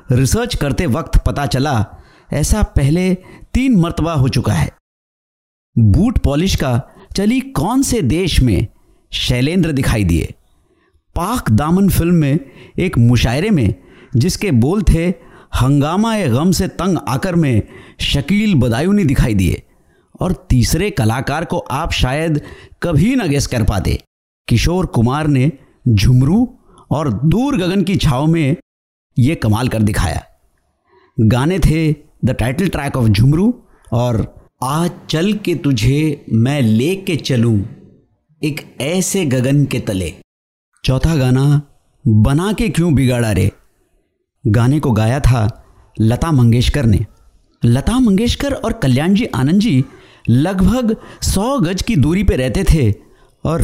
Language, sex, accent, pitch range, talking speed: Hindi, male, native, 115-175 Hz, 130 wpm